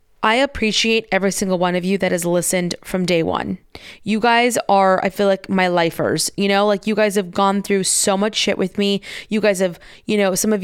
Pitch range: 190-220 Hz